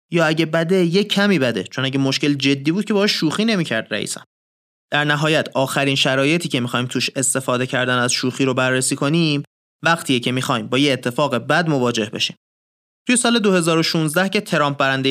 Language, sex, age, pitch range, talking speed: Persian, male, 30-49, 125-165 Hz, 180 wpm